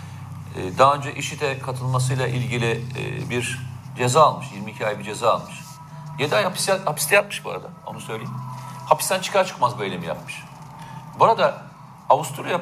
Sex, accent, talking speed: male, native, 145 wpm